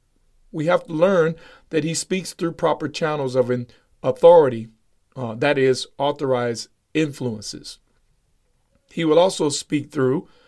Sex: male